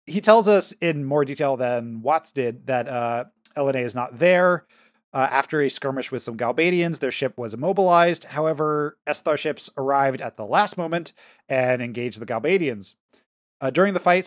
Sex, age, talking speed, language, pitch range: male, 20-39, 175 wpm, English, 125-165 Hz